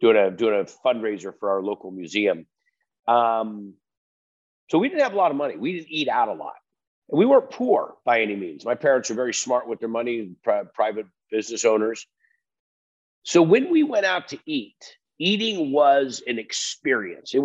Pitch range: 115-160 Hz